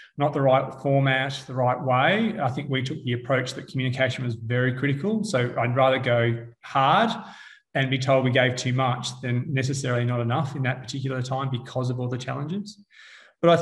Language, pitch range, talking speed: English, 120-140 Hz, 200 wpm